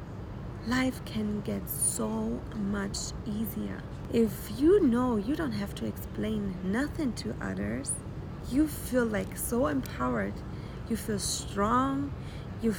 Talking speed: 120 wpm